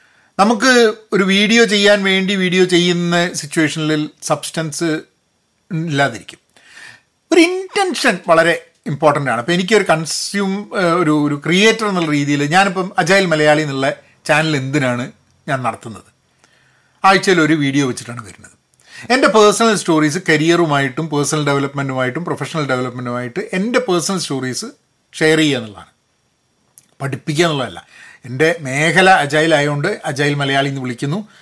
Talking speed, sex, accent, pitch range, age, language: 110 wpm, male, native, 150-205 Hz, 40-59, Malayalam